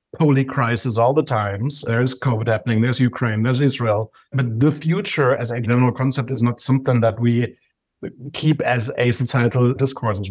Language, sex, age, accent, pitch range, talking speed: English, male, 50-69, German, 115-140 Hz, 180 wpm